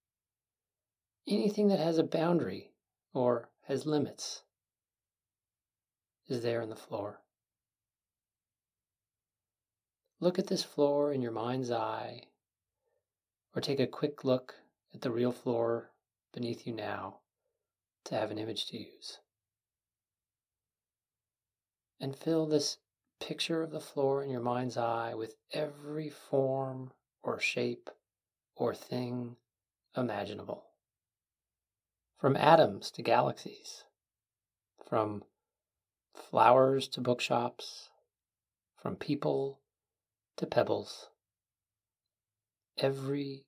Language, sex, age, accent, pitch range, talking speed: English, male, 40-59, American, 105-135 Hz, 100 wpm